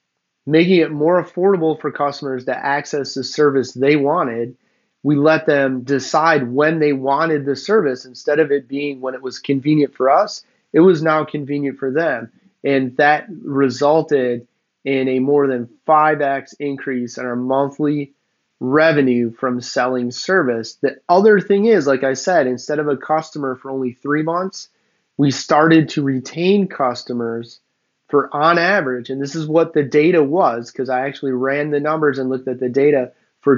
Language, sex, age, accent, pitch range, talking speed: English, male, 30-49, American, 130-155 Hz, 170 wpm